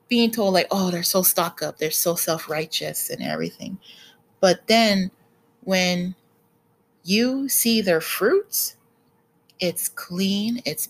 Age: 30-49